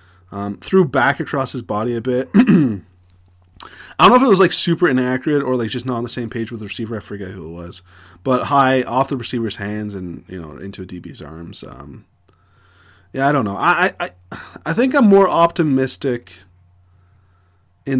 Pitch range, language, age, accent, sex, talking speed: 95-125 Hz, English, 20-39, American, male, 195 wpm